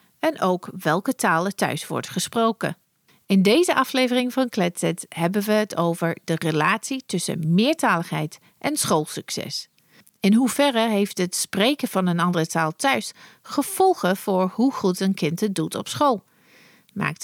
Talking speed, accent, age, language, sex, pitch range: 150 wpm, Dutch, 40-59, Dutch, female, 175-245 Hz